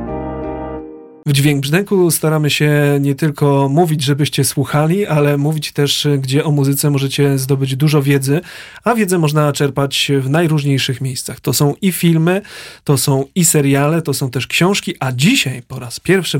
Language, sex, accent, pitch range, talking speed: Polish, male, native, 140-165 Hz, 160 wpm